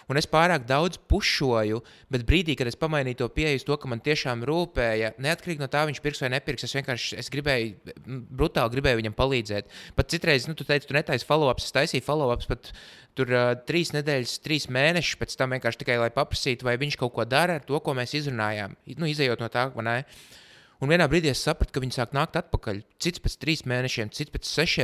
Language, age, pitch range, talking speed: English, 20-39, 120-150 Hz, 200 wpm